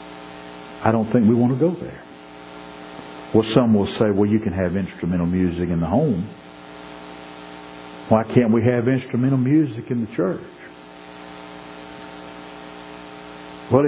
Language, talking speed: English, 135 wpm